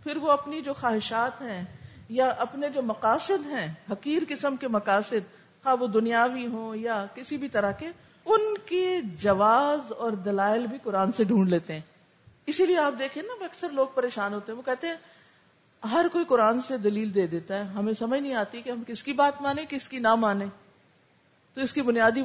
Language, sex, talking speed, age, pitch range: Urdu, female, 200 wpm, 50-69, 210-295 Hz